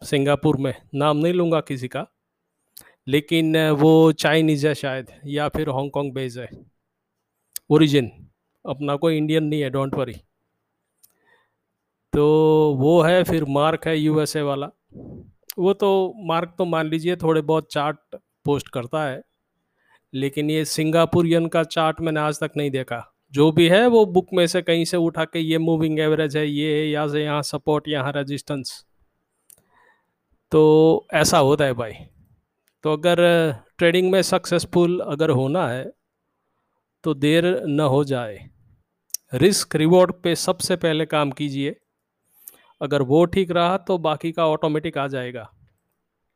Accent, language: native, Hindi